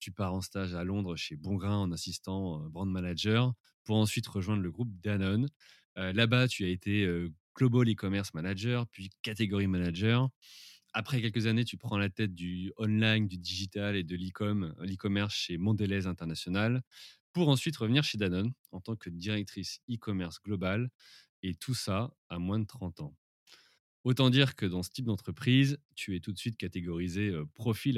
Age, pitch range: 30-49, 90-115 Hz